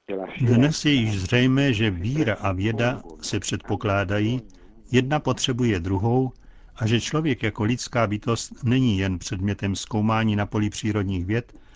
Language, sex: Czech, male